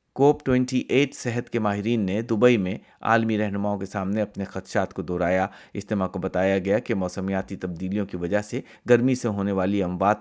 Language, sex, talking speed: Urdu, male, 180 wpm